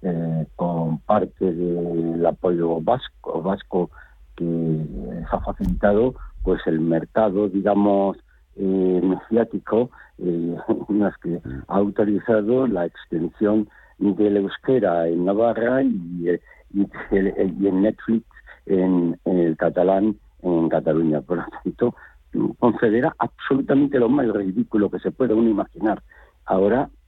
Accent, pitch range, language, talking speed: Spanish, 85-110 Hz, Spanish, 120 wpm